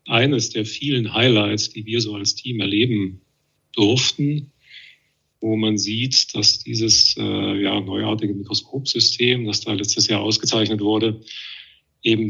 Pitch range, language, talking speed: 105-125 Hz, German, 130 wpm